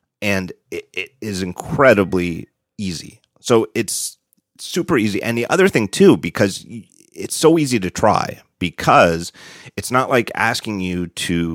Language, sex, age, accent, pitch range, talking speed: English, male, 30-49, American, 85-115 Hz, 140 wpm